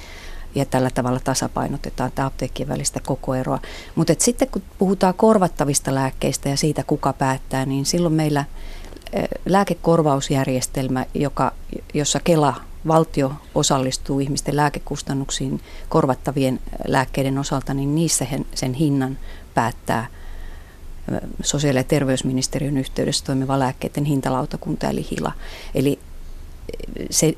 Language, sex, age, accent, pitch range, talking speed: Finnish, female, 30-49, native, 130-150 Hz, 105 wpm